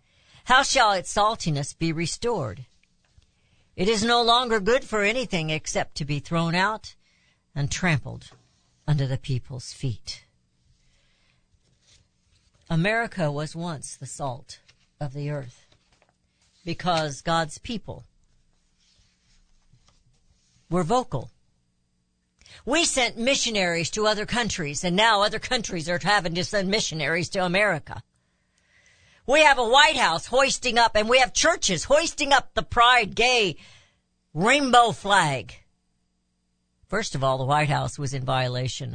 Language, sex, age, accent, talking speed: English, female, 60-79, American, 125 wpm